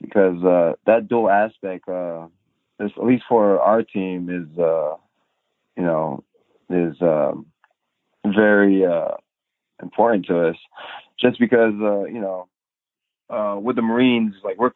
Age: 20-39